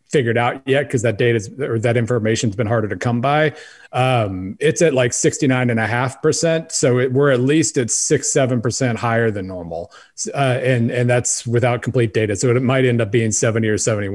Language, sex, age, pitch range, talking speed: English, male, 30-49, 115-135 Hz, 225 wpm